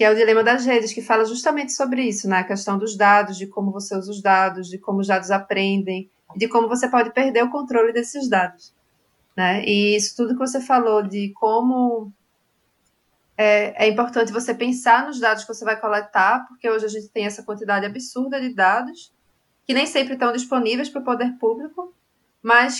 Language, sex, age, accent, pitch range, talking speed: Portuguese, female, 20-39, Brazilian, 205-250 Hz, 200 wpm